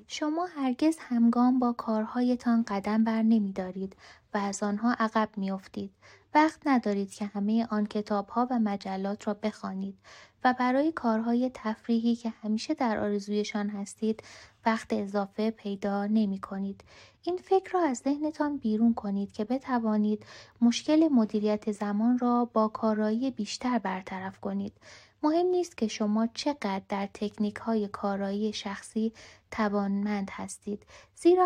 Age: 20-39